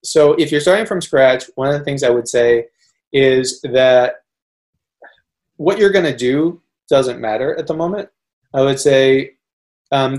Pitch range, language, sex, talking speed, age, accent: 120-140 Hz, English, male, 170 wpm, 30-49, American